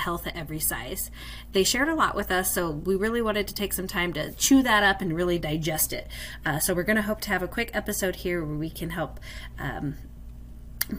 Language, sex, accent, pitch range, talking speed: English, female, American, 160-205 Hz, 230 wpm